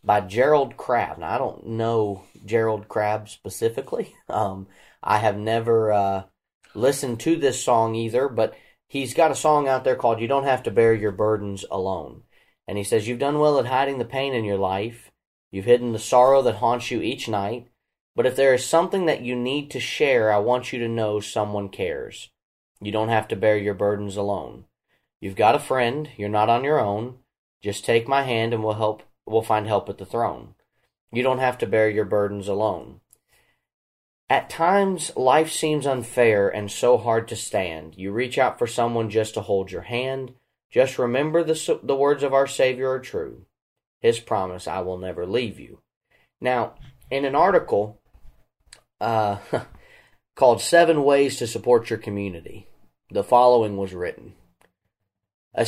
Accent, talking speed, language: American, 180 wpm, English